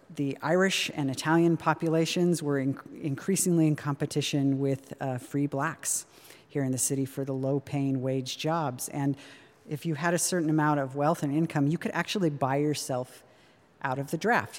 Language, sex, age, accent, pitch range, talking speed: English, female, 40-59, American, 130-155 Hz, 175 wpm